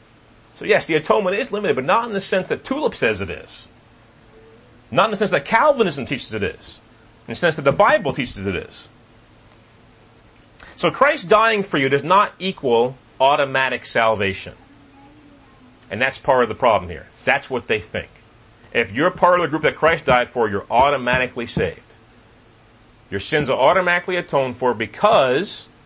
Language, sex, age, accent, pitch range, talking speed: English, male, 40-59, American, 115-170 Hz, 175 wpm